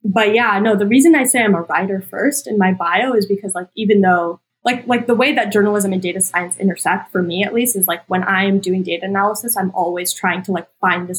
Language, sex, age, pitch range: English, female, 20-39, 185-215 Hz